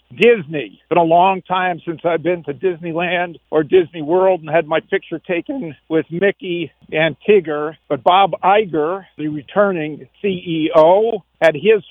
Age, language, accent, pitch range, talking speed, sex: 50-69, English, American, 160-185 Hz, 155 wpm, male